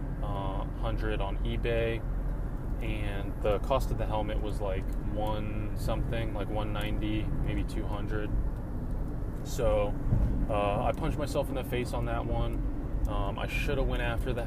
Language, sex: English, male